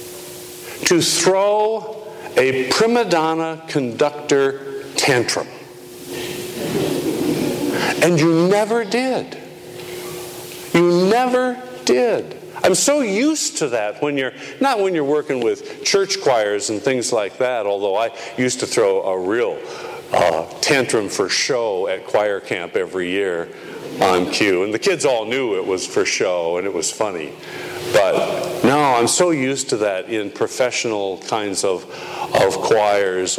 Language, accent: English, American